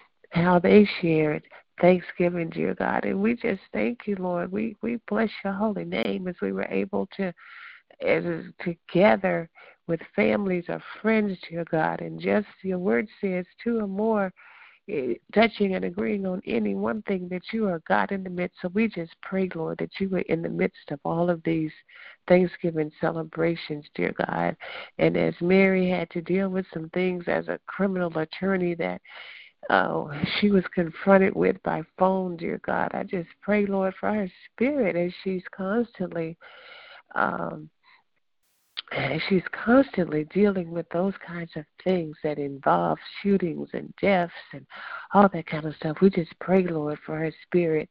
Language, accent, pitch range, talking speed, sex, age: English, American, 165-200 Hz, 165 wpm, female, 60-79